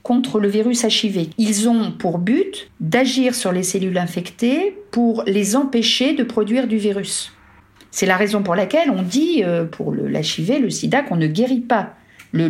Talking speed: 175 wpm